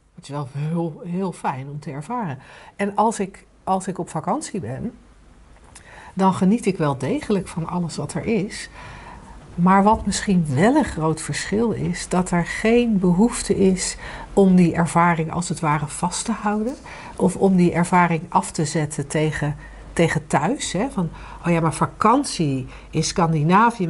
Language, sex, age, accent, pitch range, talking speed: Dutch, female, 60-79, Dutch, 160-210 Hz, 165 wpm